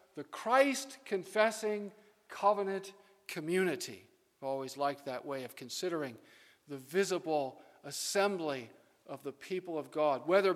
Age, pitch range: 50-69, 150-210 Hz